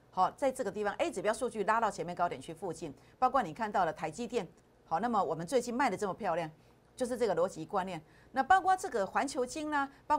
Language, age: Chinese, 50-69